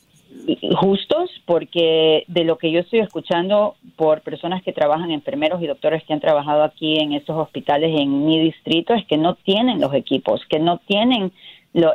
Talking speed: 175 wpm